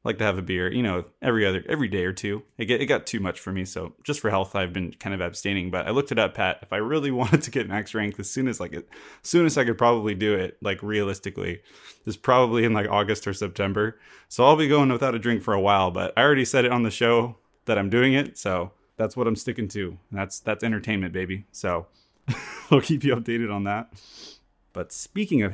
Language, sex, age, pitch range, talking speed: English, male, 20-39, 100-120 Hz, 255 wpm